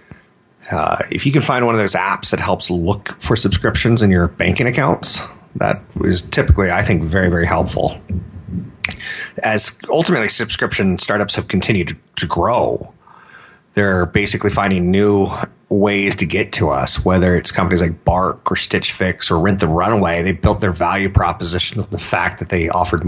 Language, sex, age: English, male, 30-49